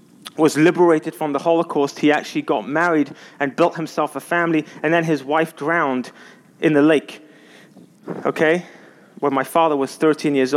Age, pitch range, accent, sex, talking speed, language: 30-49, 155-230 Hz, British, male, 165 wpm, English